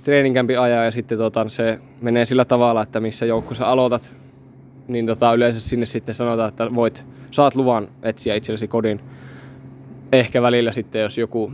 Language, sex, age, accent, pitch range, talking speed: Finnish, male, 20-39, native, 110-125 Hz, 165 wpm